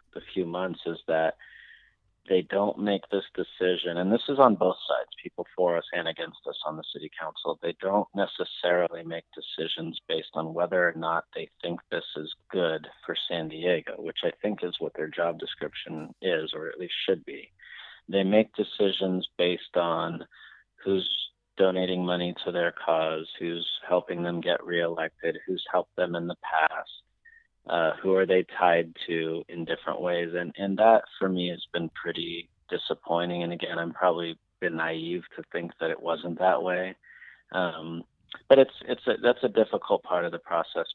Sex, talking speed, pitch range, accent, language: male, 180 wpm, 85-95 Hz, American, English